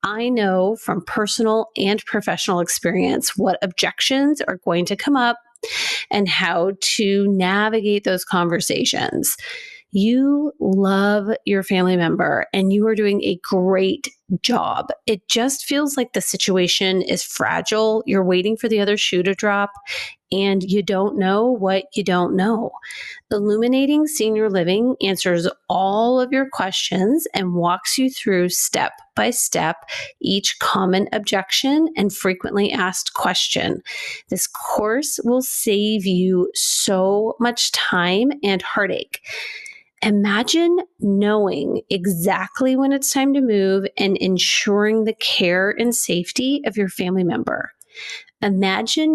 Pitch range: 190-250 Hz